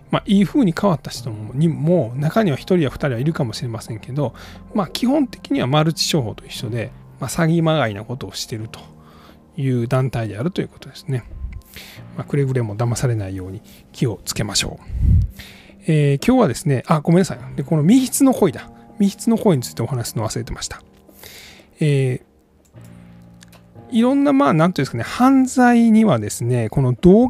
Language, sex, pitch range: Japanese, male, 115-180 Hz